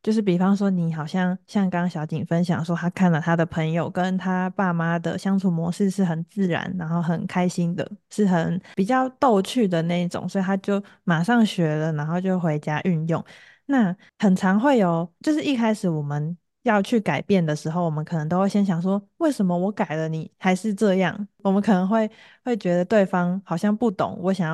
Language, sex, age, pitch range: Chinese, female, 20-39, 170-205 Hz